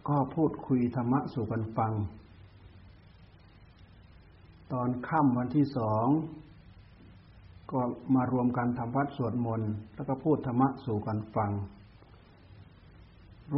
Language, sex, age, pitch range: Thai, male, 60-79, 100-130 Hz